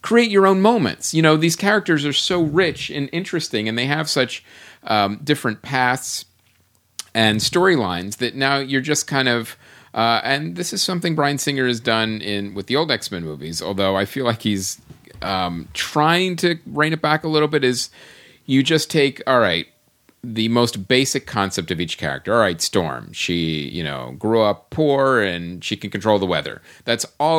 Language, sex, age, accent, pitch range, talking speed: English, male, 40-59, American, 105-150 Hz, 190 wpm